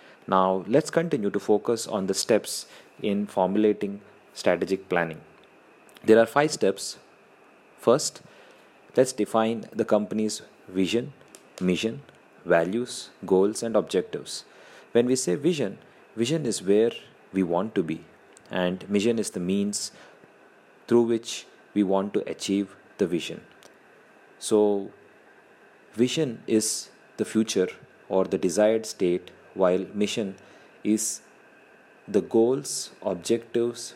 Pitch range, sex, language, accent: 95-115 Hz, male, English, Indian